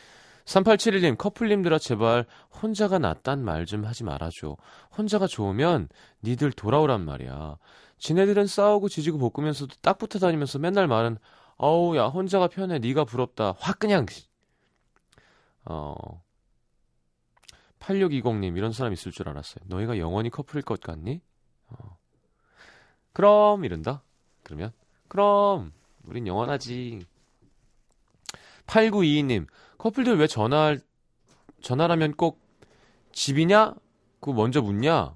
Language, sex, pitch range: Korean, male, 105-170 Hz